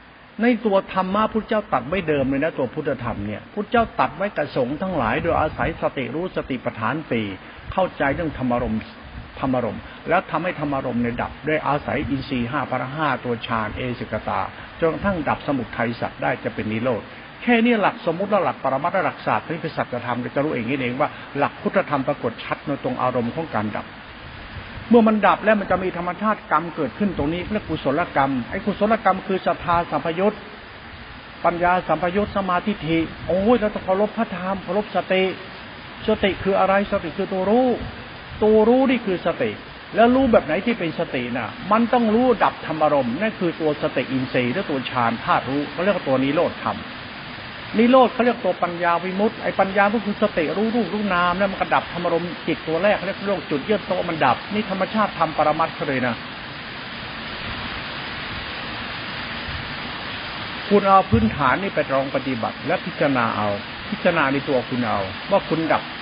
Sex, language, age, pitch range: male, Thai, 60-79, 135-205 Hz